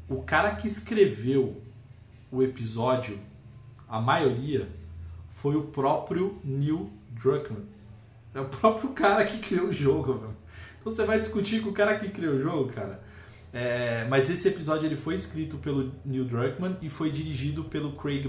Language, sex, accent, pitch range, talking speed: Portuguese, male, Brazilian, 115-150 Hz, 150 wpm